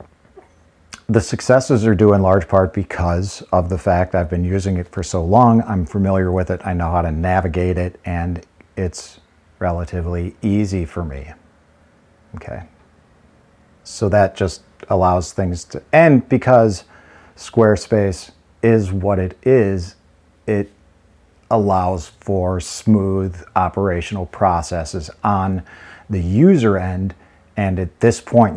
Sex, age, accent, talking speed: male, 50-69, American, 130 wpm